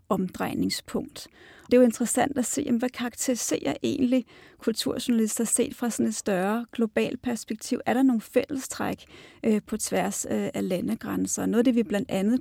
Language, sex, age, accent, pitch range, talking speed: Danish, female, 30-49, native, 210-250 Hz, 150 wpm